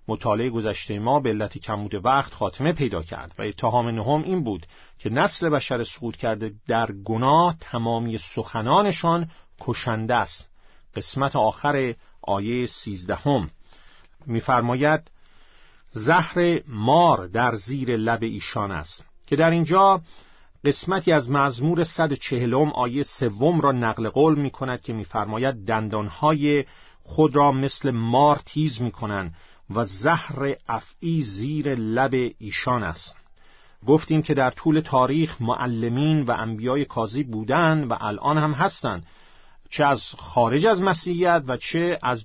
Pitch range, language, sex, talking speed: 110-155 Hz, Persian, male, 125 wpm